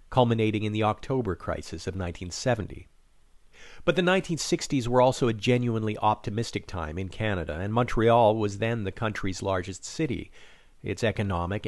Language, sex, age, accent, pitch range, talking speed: English, male, 50-69, American, 95-125 Hz, 145 wpm